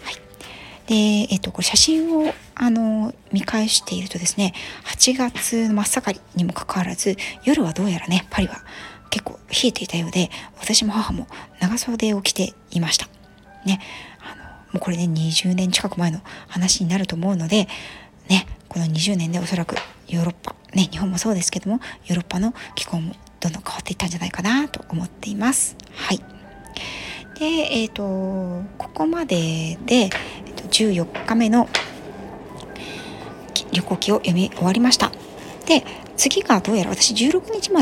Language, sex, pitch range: Japanese, female, 180-240 Hz